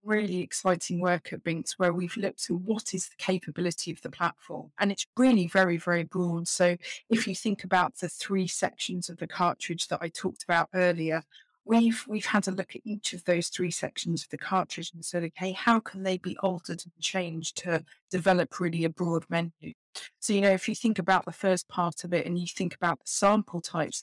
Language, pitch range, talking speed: English, 170-190 Hz, 215 wpm